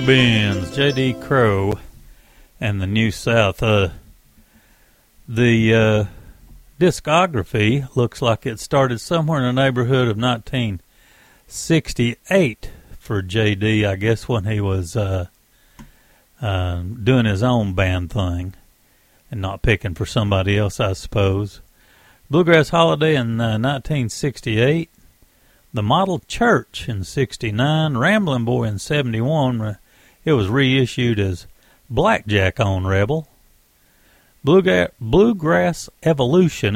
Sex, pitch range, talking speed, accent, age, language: male, 105-145 Hz, 105 wpm, American, 60-79, English